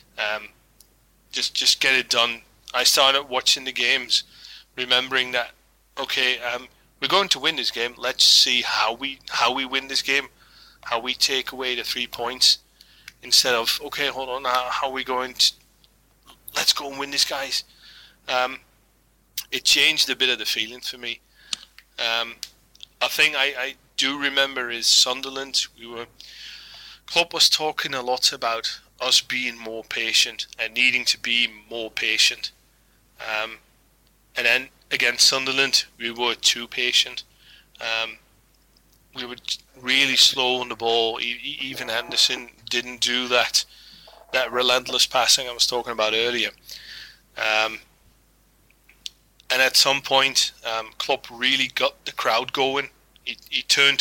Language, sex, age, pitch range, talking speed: English, male, 30-49, 115-135 Hz, 150 wpm